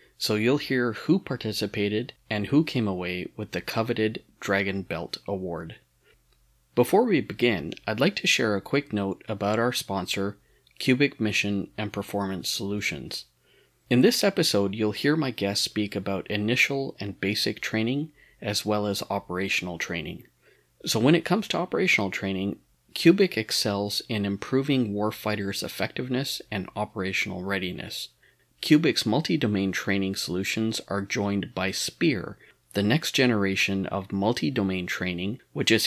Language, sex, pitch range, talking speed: English, male, 100-115 Hz, 140 wpm